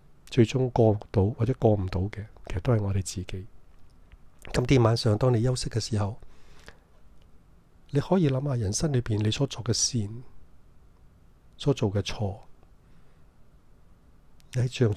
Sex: male